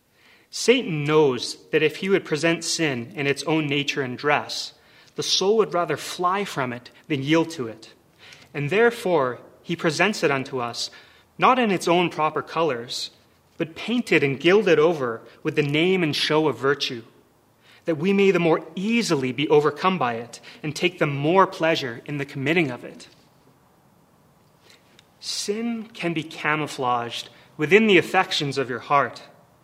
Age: 30-49